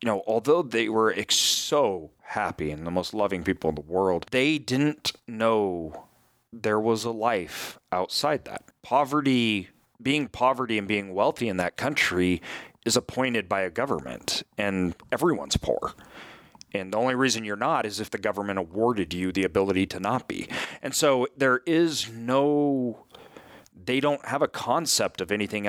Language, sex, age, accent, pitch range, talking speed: English, male, 30-49, American, 100-125 Hz, 165 wpm